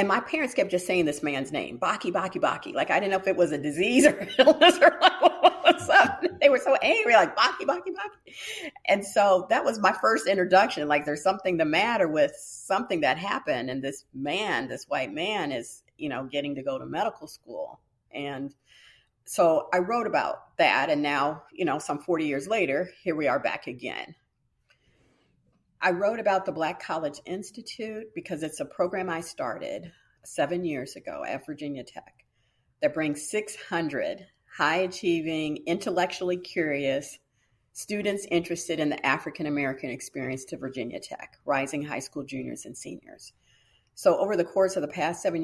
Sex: female